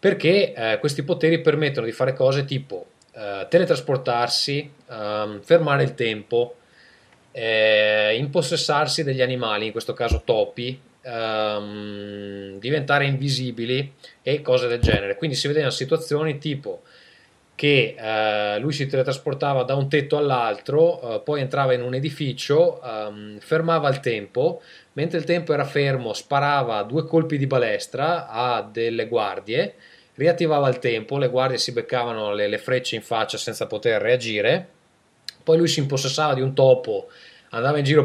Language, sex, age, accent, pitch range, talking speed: Italian, male, 20-39, native, 115-160 Hz, 140 wpm